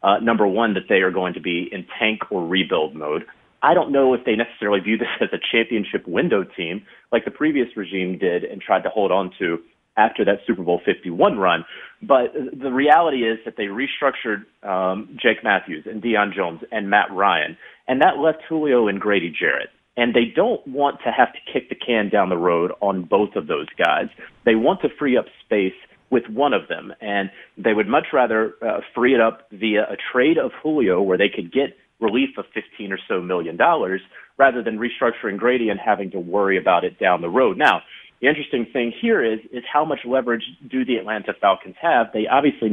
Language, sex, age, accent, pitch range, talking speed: English, male, 30-49, American, 105-140 Hz, 210 wpm